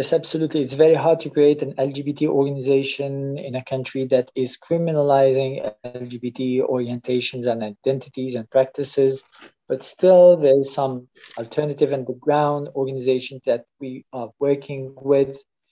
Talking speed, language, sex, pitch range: 135 wpm, English, male, 125-145 Hz